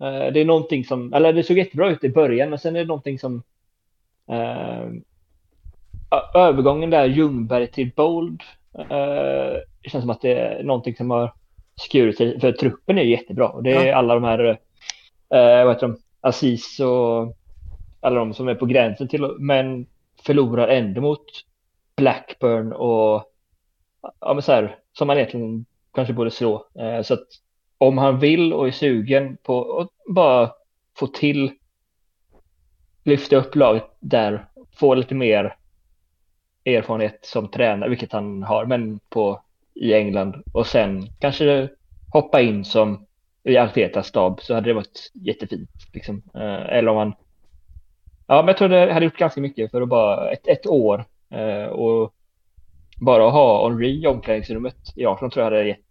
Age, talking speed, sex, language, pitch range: 20-39, 160 wpm, male, English, 95-135 Hz